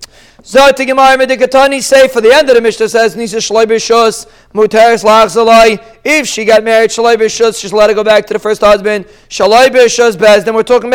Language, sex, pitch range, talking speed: English, male, 225-260 Hz, 185 wpm